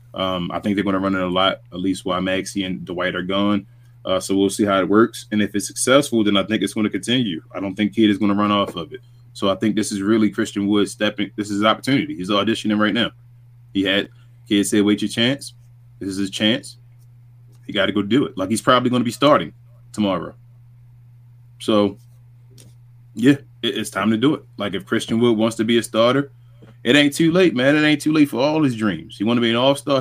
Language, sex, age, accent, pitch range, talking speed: English, male, 20-39, American, 100-120 Hz, 250 wpm